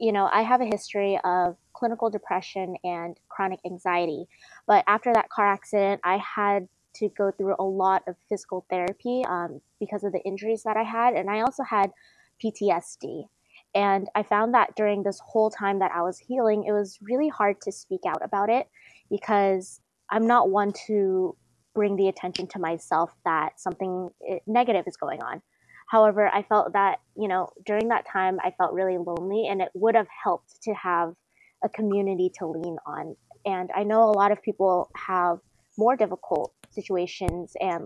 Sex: female